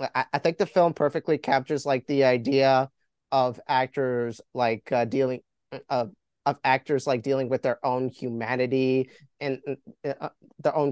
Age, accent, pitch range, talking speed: 30-49, American, 130-150 Hz, 150 wpm